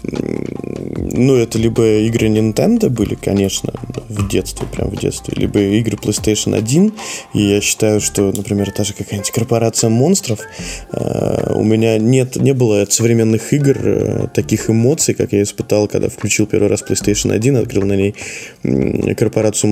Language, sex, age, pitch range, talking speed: Russian, male, 20-39, 105-120 Hz, 150 wpm